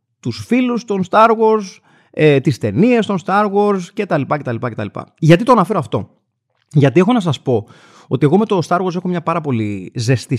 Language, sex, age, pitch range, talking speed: Greek, male, 30-49, 115-155 Hz, 225 wpm